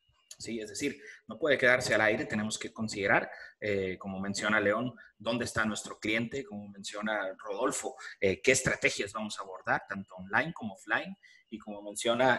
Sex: male